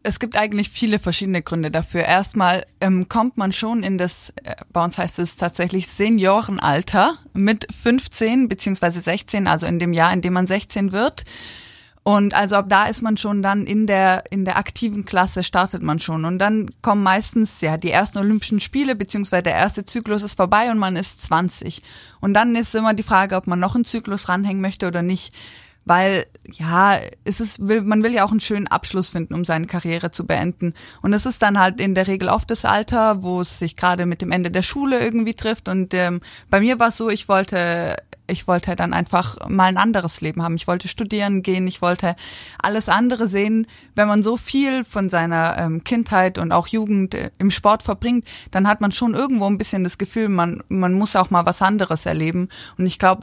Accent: German